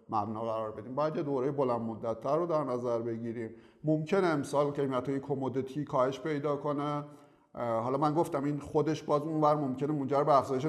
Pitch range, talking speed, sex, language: 125-150 Hz, 170 wpm, male, Persian